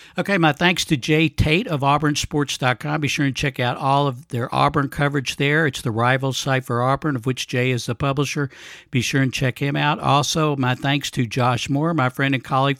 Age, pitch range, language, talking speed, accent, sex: 60-79, 125-150 Hz, English, 220 wpm, American, male